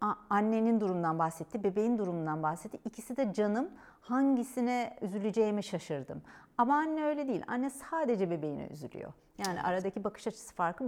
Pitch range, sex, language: 170-245 Hz, female, Turkish